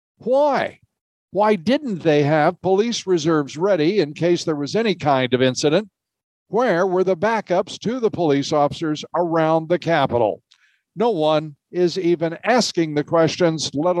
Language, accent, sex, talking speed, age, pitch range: English, American, male, 150 wpm, 60-79, 145-190 Hz